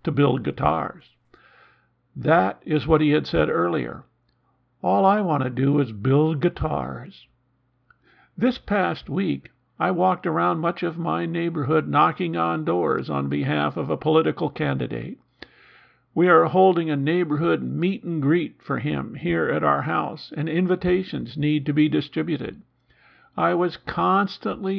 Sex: male